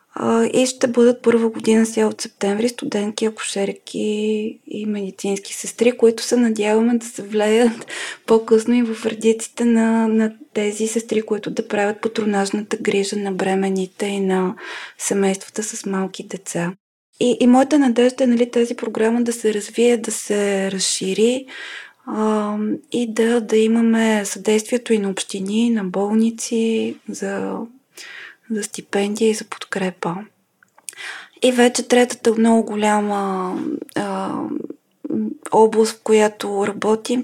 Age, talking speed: 20-39, 130 wpm